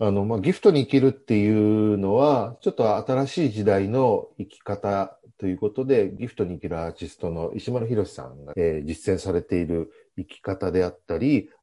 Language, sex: Japanese, male